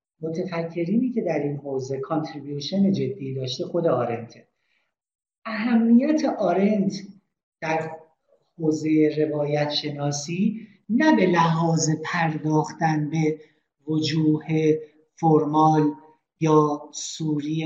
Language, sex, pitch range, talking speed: Persian, male, 150-195 Hz, 85 wpm